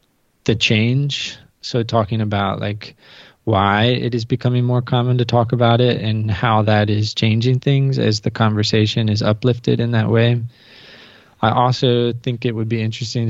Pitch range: 105-115 Hz